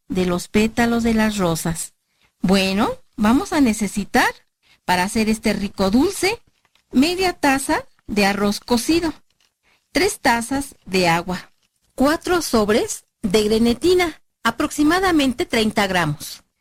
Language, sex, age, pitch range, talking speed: Spanish, female, 40-59, 205-275 Hz, 110 wpm